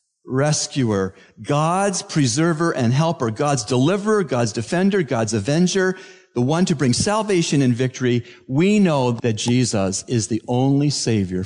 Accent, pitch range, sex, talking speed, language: American, 110-145 Hz, male, 135 wpm, English